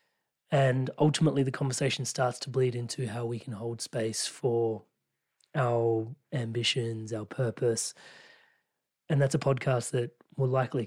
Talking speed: 140 wpm